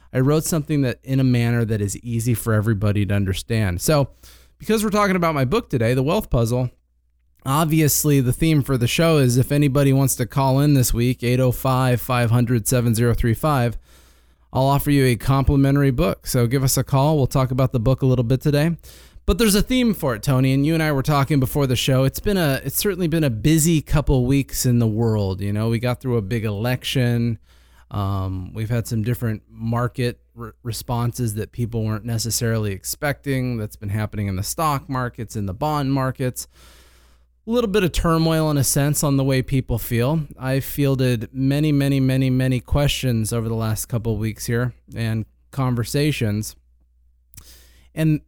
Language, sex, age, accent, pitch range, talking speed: English, male, 20-39, American, 110-140 Hz, 190 wpm